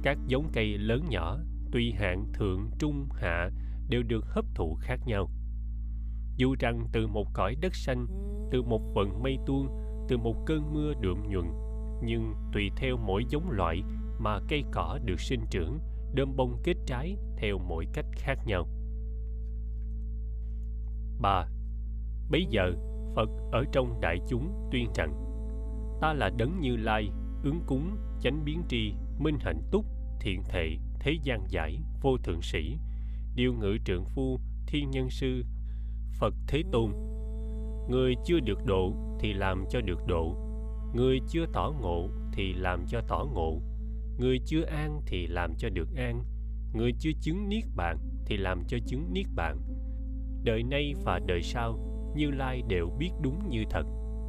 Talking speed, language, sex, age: 160 wpm, Vietnamese, male, 20-39